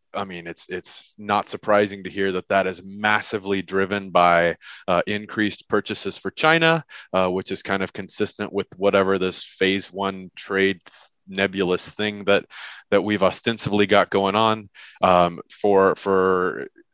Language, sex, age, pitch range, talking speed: English, male, 20-39, 95-115 Hz, 150 wpm